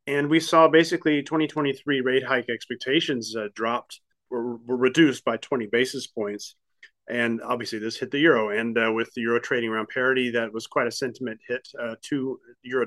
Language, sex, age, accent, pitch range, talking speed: English, male, 30-49, American, 115-140 Hz, 185 wpm